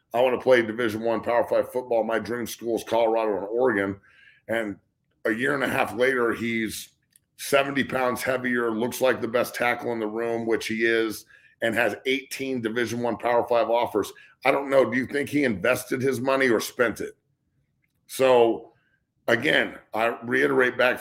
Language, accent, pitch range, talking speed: English, American, 115-130 Hz, 185 wpm